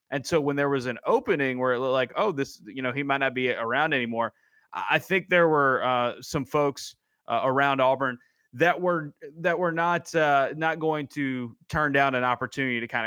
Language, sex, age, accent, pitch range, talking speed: English, male, 20-39, American, 120-140 Hz, 210 wpm